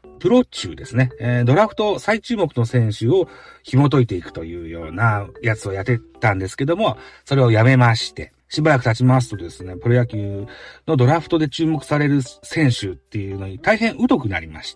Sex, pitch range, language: male, 105-140 Hz, Japanese